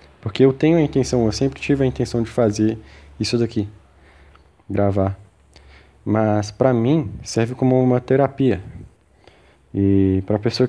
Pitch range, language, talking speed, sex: 95-130 Hz, Portuguese, 140 wpm, male